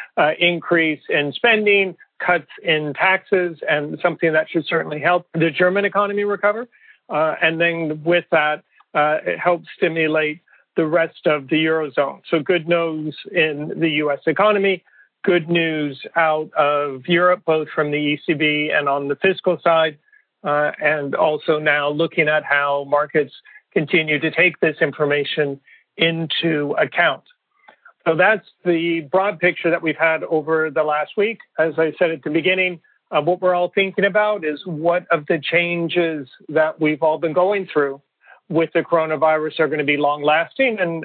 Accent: American